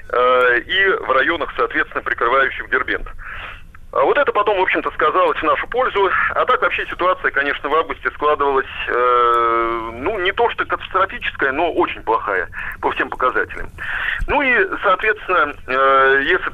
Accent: native